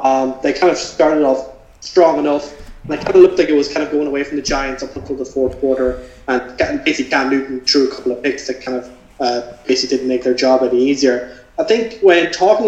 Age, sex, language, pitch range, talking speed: 20-39, male, English, 135-170 Hz, 250 wpm